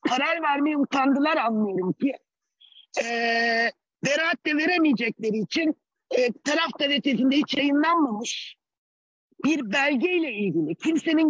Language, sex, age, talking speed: Turkish, male, 50-69, 100 wpm